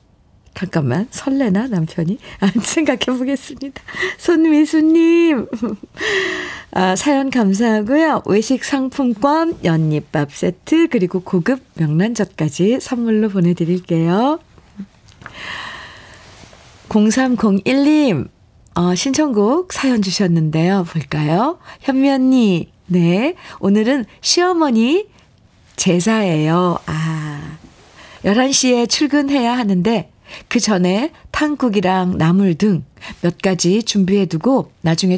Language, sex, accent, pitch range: Korean, female, native, 170-260 Hz